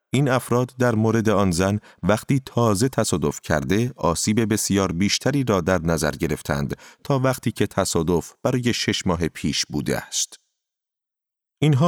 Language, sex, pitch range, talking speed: Persian, male, 85-125 Hz, 140 wpm